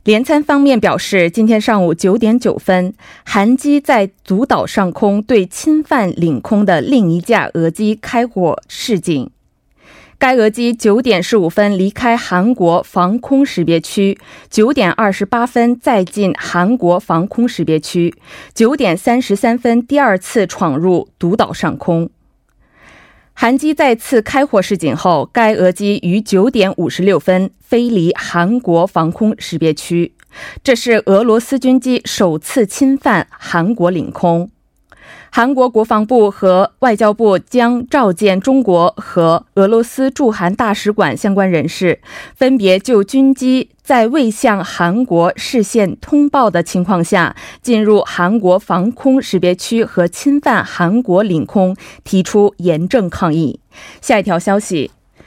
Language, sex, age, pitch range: Korean, female, 20-39, 180-245 Hz